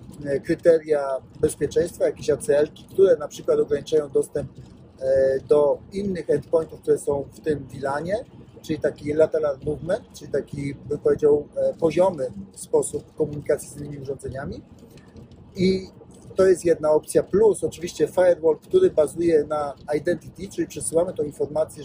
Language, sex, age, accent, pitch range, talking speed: Polish, male, 40-59, native, 150-195 Hz, 130 wpm